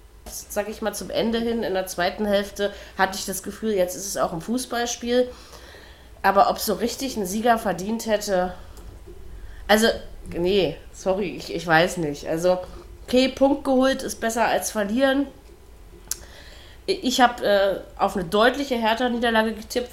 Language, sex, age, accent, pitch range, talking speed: German, female, 30-49, German, 185-240 Hz, 155 wpm